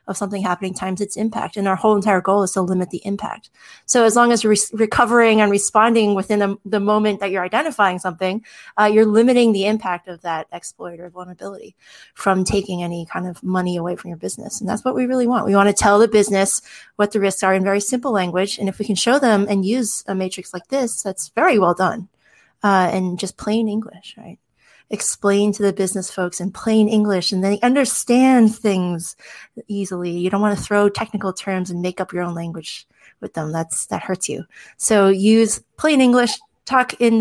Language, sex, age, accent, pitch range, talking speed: English, female, 30-49, American, 190-220 Hz, 210 wpm